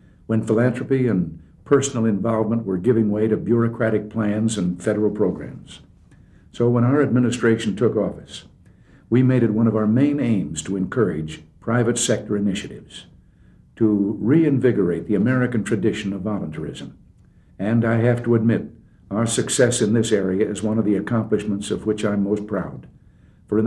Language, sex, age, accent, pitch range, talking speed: English, male, 60-79, American, 100-120 Hz, 155 wpm